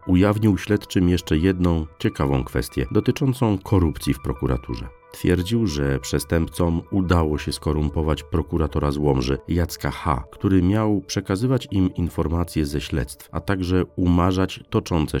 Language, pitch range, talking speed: Polish, 70-90 Hz, 125 wpm